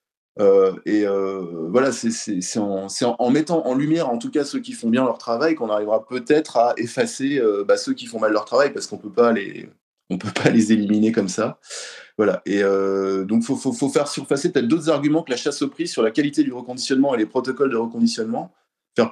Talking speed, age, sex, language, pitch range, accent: 240 wpm, 20-39, male, French, 105-145 Hz, French